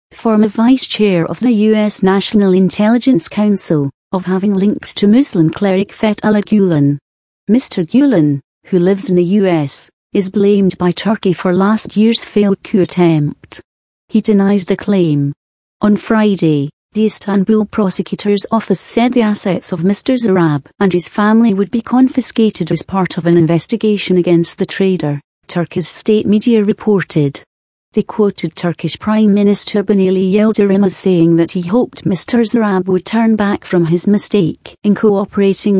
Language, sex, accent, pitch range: English, female, British, 175-215 Hz